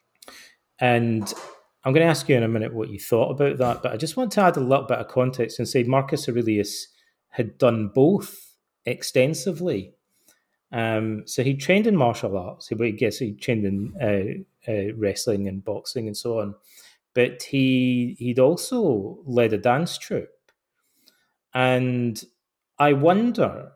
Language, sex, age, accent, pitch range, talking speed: English, male, 30-49, British, 110-145 Hz, 165 wpm